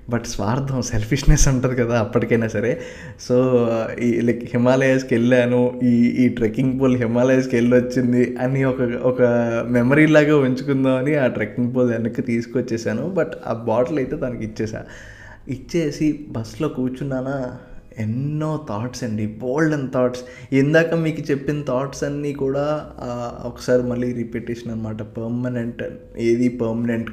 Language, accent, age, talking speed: Telugu, native, 20-39, 135 wpm